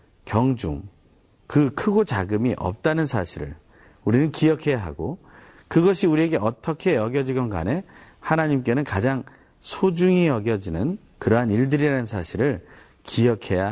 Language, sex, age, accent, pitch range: Korean, male, 40-59, native, 90-145 Hz